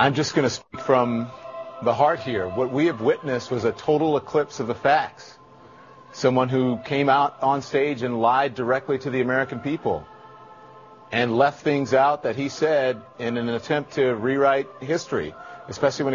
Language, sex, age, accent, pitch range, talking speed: English, male, 40-59, American, 115-150 Hz, 180 wpm